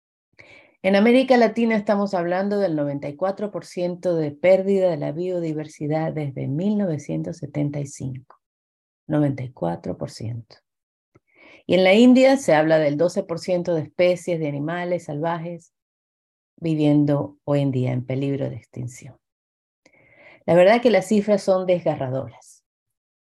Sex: female